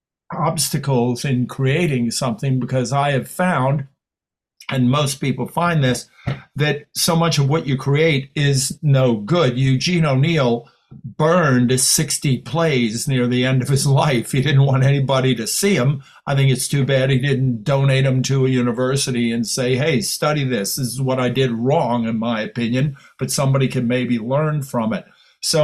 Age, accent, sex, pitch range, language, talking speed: 50-69, American, male, 125-150 Hz, English, 175 wpm